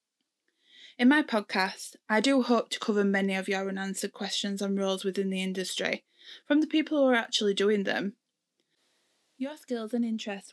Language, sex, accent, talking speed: English, female, British, 170 wpm